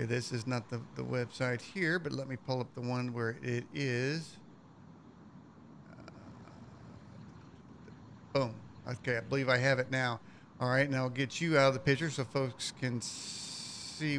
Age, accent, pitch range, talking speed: 50-69, American, 130-175 Hz, 170 wpm